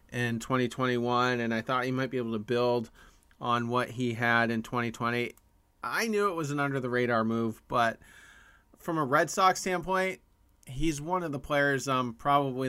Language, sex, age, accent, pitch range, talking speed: English, male, 30-49, American, 110-135 Hz, 185 wpm